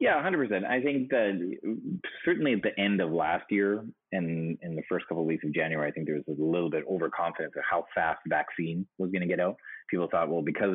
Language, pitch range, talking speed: English, 80-100 Hz, 250 wpm